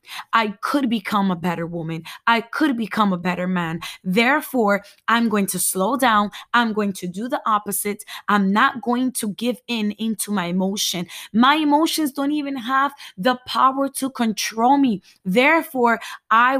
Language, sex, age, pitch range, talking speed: English, female, 20-39, 195-245 Hz, 165 wpm